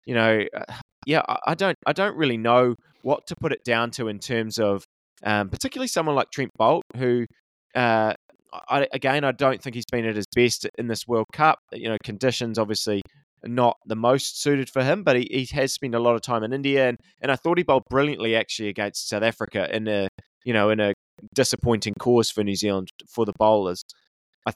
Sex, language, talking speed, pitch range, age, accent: male, English, 215 wpm, 110-130 Hz, 20-39, Australian